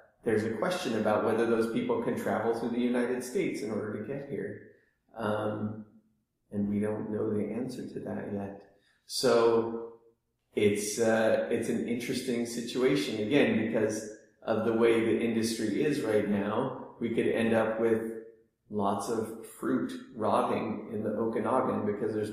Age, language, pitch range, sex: 30-49, English, 105-115 Hz, male